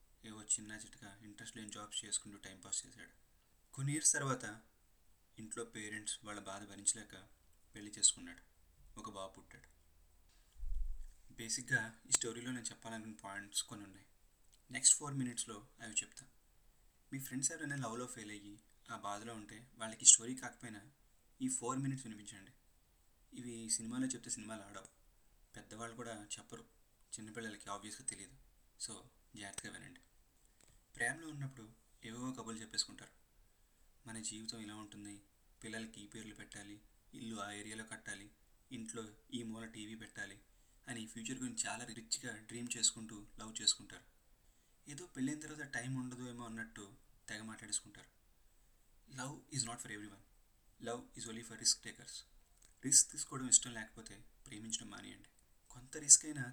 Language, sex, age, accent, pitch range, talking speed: Telugu, male, 20-39, native, 105-120 Hz, 130 wpm